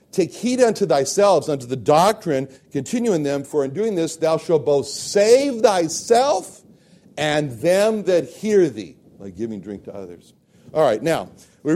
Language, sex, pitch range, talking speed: English, male, 110-160 Hz, 170 wpm